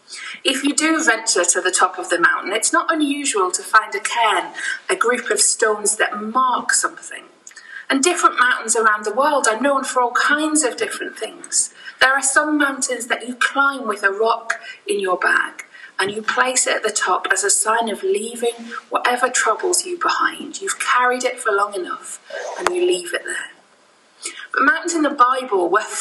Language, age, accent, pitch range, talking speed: English, 40-59, British, 230-365 Hz, 195 wpm